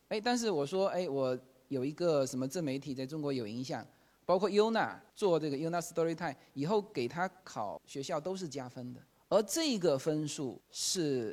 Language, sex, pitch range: Chinese, male, 135-205 Hz